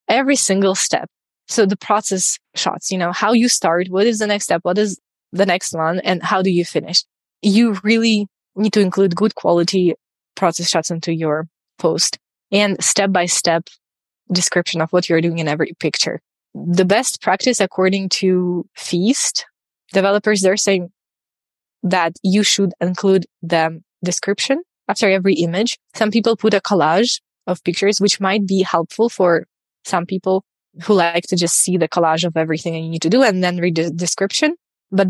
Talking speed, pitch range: 175 wpm, 175-205 Hz